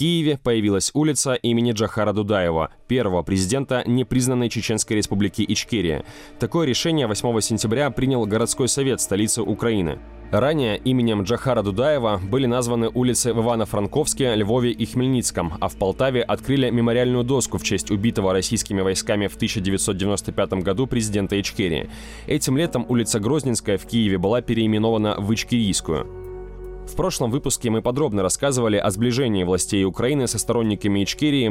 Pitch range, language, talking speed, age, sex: 105-125 Hz, Russian, 140 wpm, 20-39, male